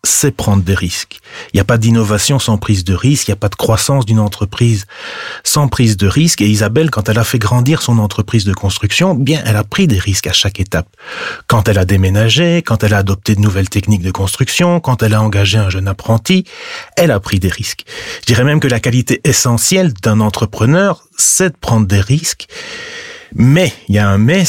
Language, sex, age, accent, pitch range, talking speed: French, male, 30-49, French, 105-140 Hz, 220 wpm